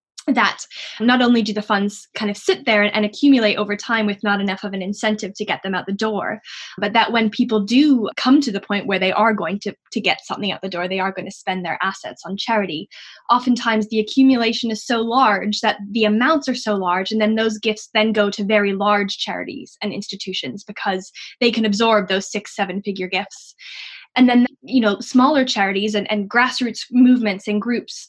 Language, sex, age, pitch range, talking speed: English, female, 10-29, 195-225 Hz, 210 wpm